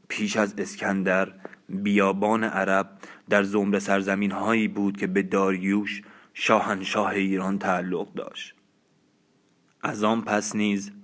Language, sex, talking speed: Persian, male, 115 wpm